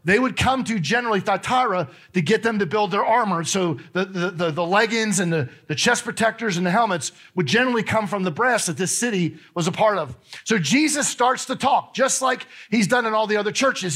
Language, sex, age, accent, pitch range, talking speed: English, male, 40-59, American, 185-235 Hz, 230 wpm